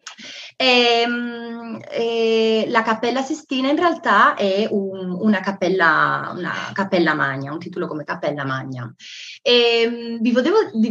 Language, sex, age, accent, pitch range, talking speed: Italian, female, 20-39, native, 180-235 Hz, 120 wpm